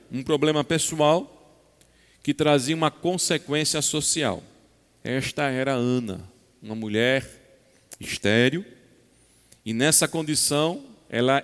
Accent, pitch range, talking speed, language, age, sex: Brazilian, 150-195 Hz, 95 wpm, Portuguese, 40-59, male